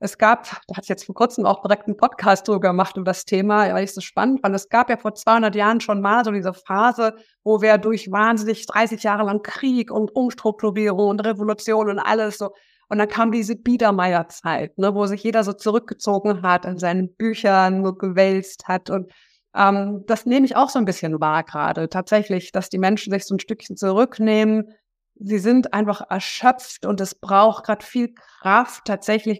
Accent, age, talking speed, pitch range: German, 50-69, 205 wpm, 195-230 Hz